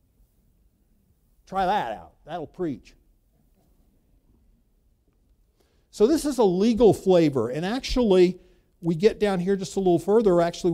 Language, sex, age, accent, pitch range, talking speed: English, male, 50-69, American, 170-210 Hz, 125 wpm